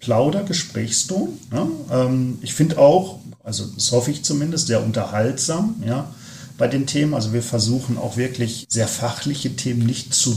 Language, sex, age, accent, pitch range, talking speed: German, male, 40-59, German, 115-140 Hz, 155 wpm